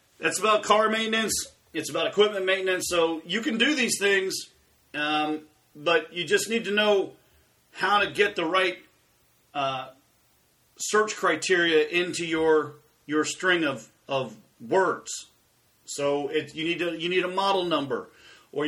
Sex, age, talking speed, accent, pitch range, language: male, 40-59, 150 wpm, American, 165-230 Hz, English